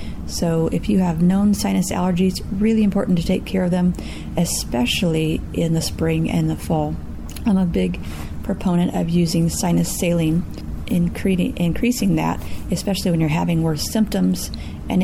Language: English